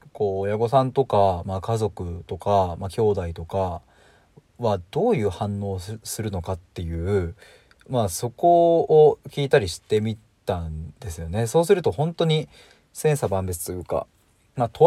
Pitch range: 95-125 Hz